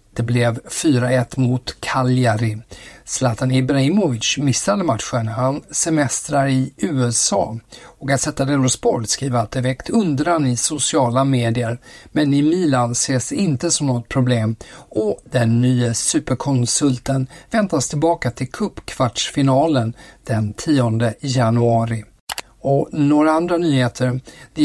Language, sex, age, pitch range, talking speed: Swedish, male, 50-69, 120-145 Hz, 115 wpm